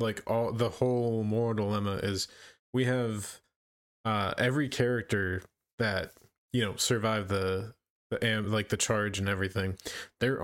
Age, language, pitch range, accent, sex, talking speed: 20-39, English, 100-120 Hz, American, male, 145 wpm